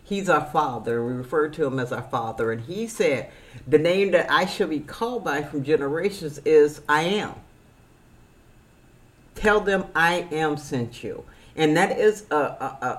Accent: American